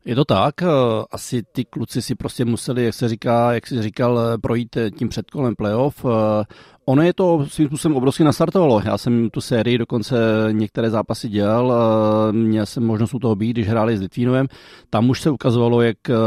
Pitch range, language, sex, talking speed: 100-115 Hz, Czech, male, 180 wpm